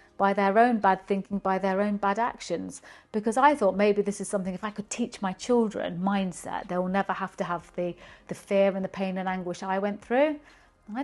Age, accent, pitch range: 40-59, British, 190-225 Hz